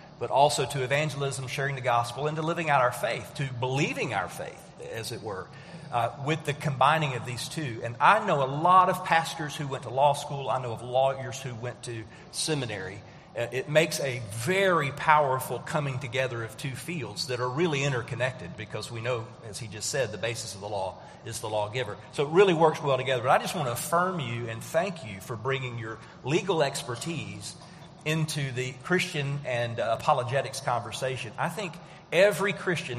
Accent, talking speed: American, 195 wpm